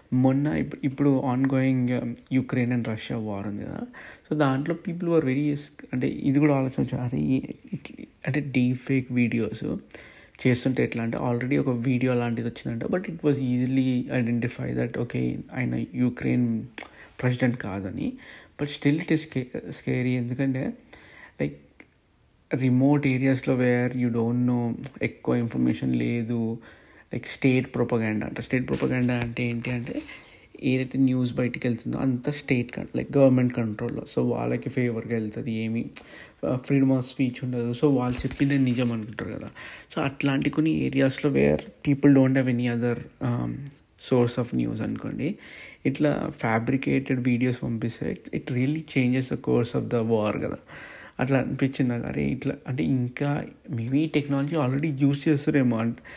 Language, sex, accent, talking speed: Telugu, male, native, 145 wpm